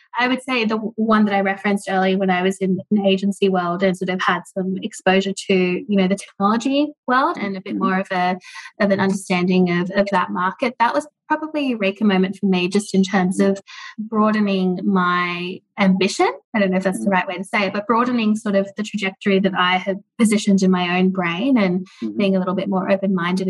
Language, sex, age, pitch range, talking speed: English, female, 20-39, 185-220 Hz, 225 wpm